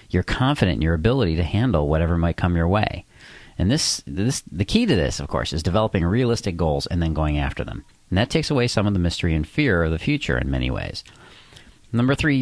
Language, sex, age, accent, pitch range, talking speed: English, male, 40-59, American, 80-120 Hz, 230 wpm